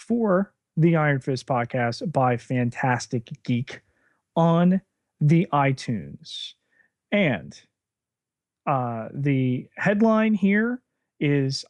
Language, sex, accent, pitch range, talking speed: English, male, American, 135-205 Hz, 85 wpm